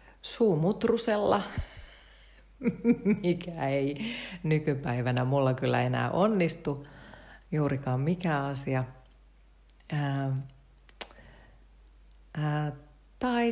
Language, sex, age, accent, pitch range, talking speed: Finnish, female, 30-49, native, 130-165 Hz, 55 wpm